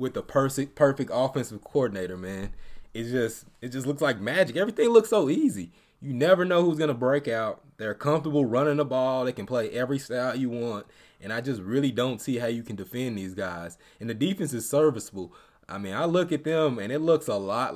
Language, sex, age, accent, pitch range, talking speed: English, male, 20-39, American, 105-145 Hz, 225 wpm